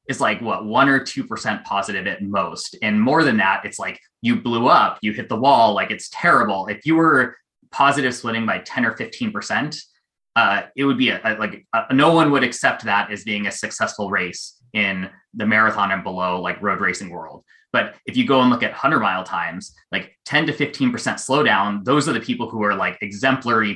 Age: 20-39